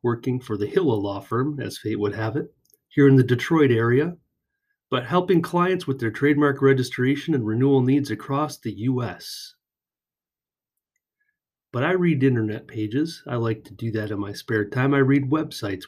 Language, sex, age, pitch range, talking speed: English, male, 30-49, 115-145 Hz, 175 wpm